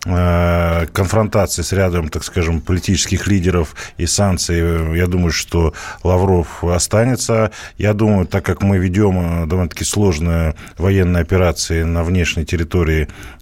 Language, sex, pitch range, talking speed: Russian, male, 85-100 Hz, 120 wpm